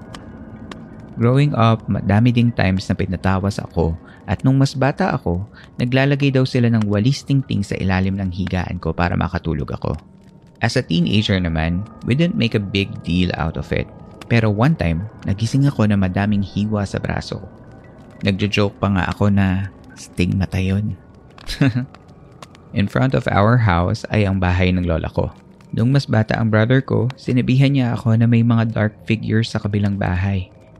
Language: Filipino